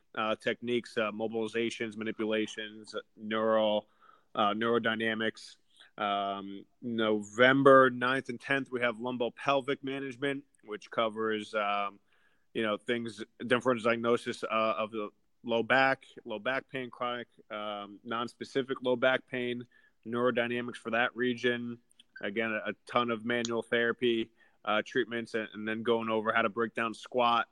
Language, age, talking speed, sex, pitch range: English, 20-39, 130 wpm, male, 110-120 Hz